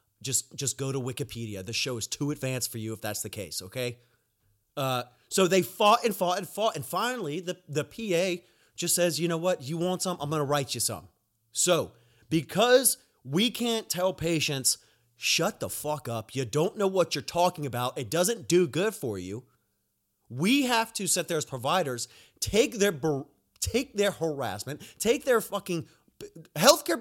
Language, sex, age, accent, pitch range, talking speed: English, male, 30-49, American, 130-195 Hz, 180 wpm